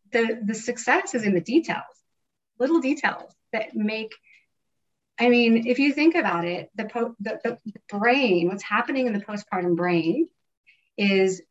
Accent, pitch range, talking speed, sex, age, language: American, 185-255 Hz, 145 wpm, female, 30-49, English